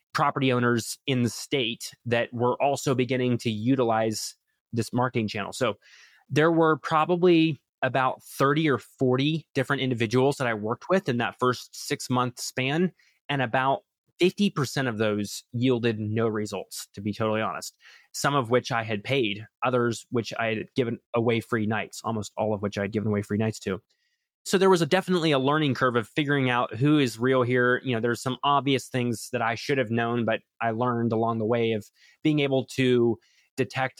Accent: American